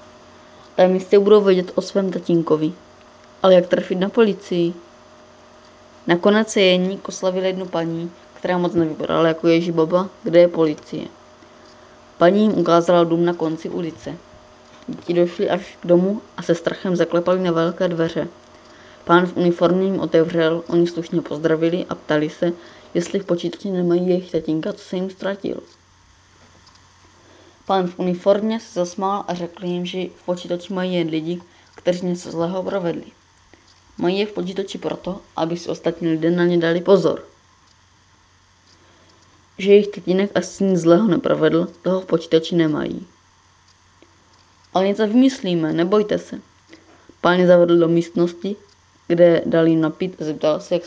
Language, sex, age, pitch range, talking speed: Czech, female, 20-39, 160-185 Hz, 150 wpm